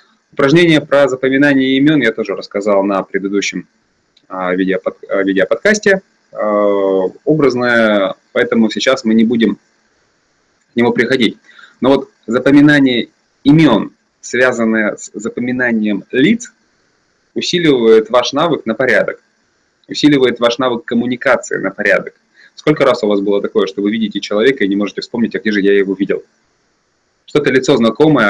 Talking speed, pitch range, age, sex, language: 130 wpm, 105-145 Hz, 20-39, male, Russian